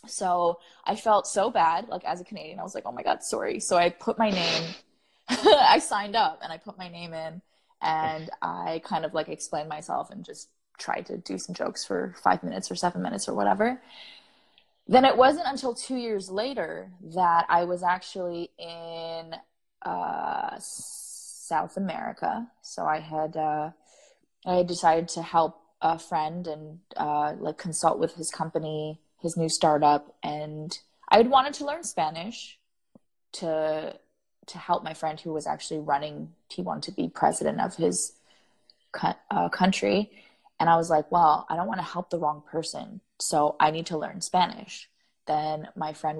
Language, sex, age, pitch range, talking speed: English, female, 20-39, 160-210 Hz, 175 wpm